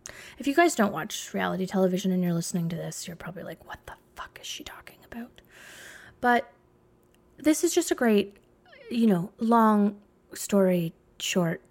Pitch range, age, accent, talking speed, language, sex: 180-230 Hz, 20-39, American, 170 wpm, English, female